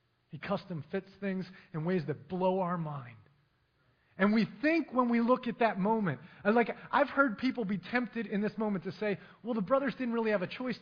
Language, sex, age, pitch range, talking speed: English, male, 30-49, 175-225 Hz, 210 wpm